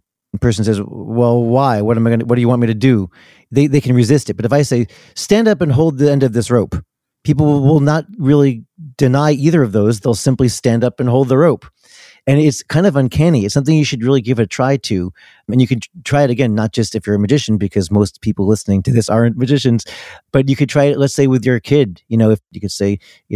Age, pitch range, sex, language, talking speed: 40-59, 115-140 Hz, male, English, 255 wpm